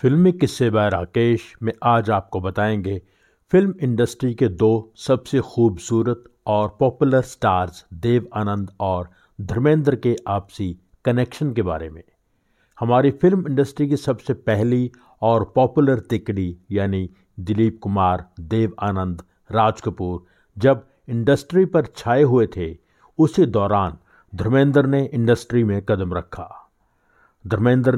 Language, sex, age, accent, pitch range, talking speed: Hindi, male, 50-69, native, 95-125 Hz, 120 wpm